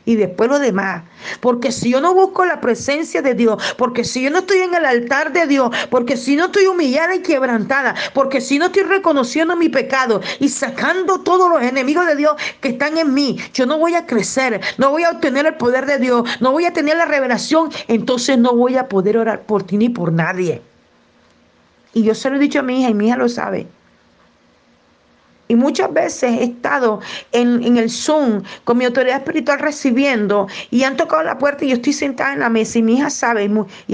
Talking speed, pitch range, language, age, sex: 215 wpm, 225-295 Hz, Spanish, 50-69, female